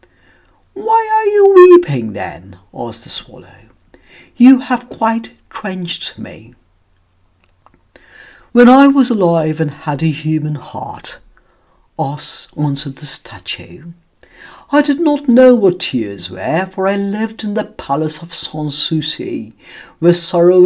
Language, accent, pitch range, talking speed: English, British, 150-200 Hz, 130 wpm